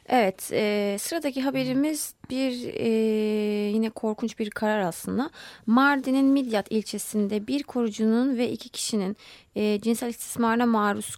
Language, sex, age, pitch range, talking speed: Turkish, female, 30-49, 200-250 Hz, 125 wpm